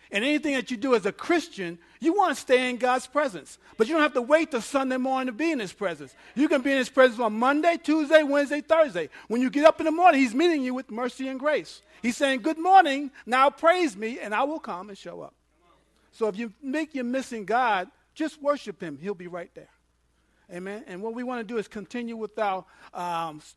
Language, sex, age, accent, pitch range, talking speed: English, male, 50-69, American, 190-255 Hz, 240 wpm